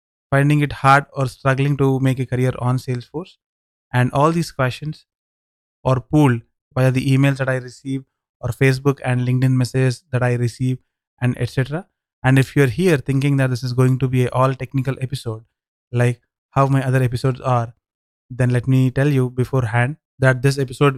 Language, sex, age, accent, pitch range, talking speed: English, male, 20-39, Indian, 125-135 Hz, 180 wpm